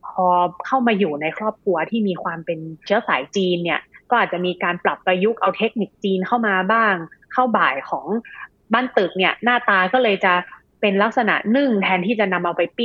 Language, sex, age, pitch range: Thai, female, 20-39, 175-215 Hz